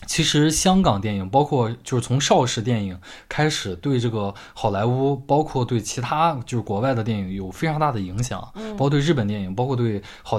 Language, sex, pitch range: Chinese, male, 105-150 Hz